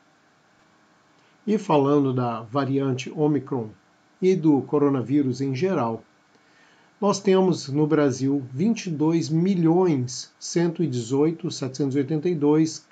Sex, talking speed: male, 70 wpm